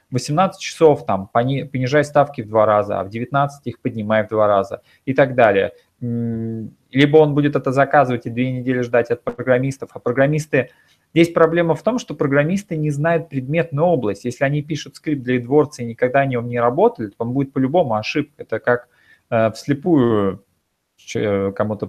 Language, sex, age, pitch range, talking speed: Russian, male, 20-39, 110-145 Hz, 170 wpm